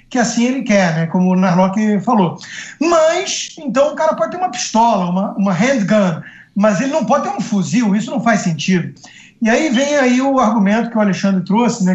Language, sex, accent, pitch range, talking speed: Portuguese, male, Brazilian, 195-245 Hz, 210 wpm